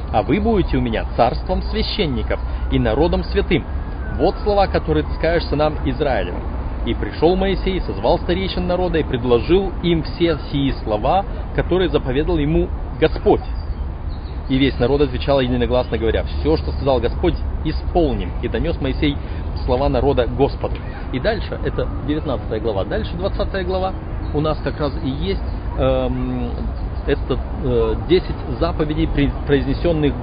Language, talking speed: Russian, 135 wpm